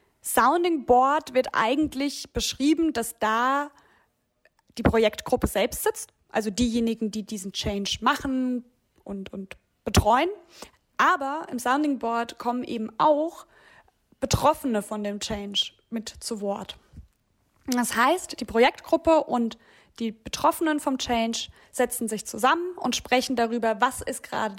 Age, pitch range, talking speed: 20-39, 225-290 Hz, 125 wpm